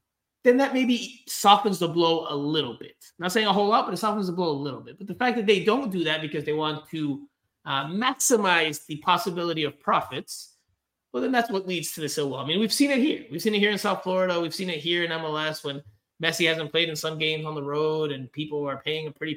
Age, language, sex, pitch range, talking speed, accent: 20-39, English, male, 145-195 Hz, 260 wpm, American